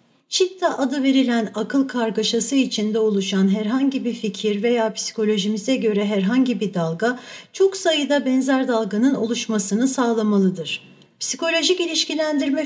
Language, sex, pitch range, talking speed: Turkish, female, 215-275 Hz, 115 wpm